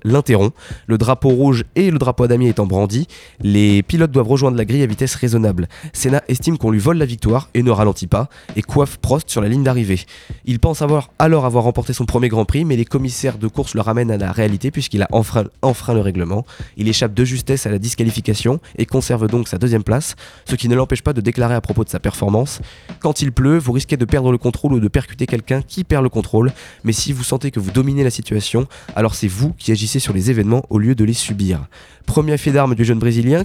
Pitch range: 115-140 Hz